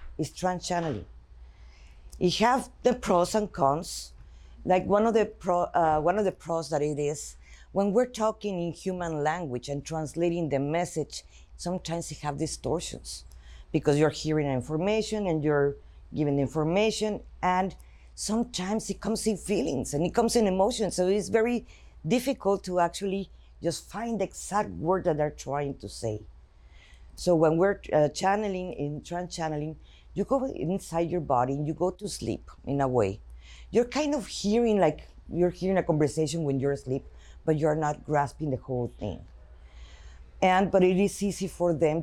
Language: English